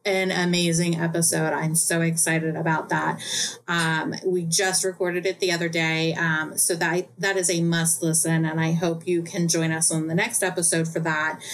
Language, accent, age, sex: English, American, 30-49, female